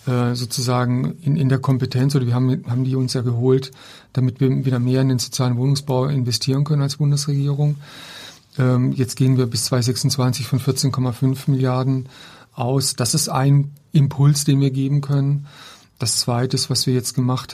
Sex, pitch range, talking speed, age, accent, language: male, 125-140 Hz, 165 wpm, 40-59, German, German